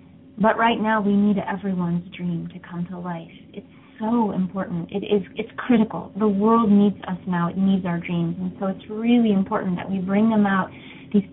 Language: English